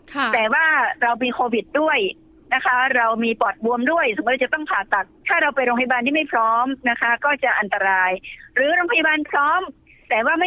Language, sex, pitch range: Thai, female, 230-285 Hz